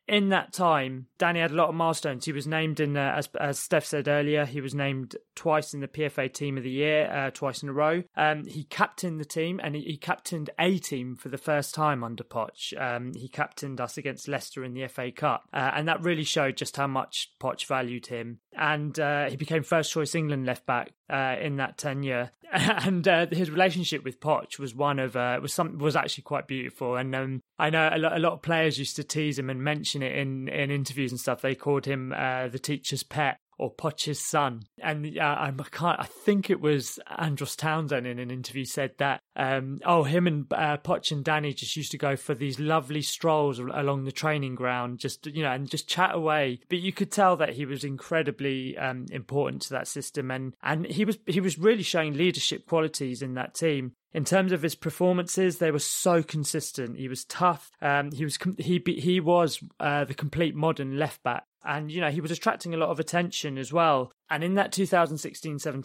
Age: 20-39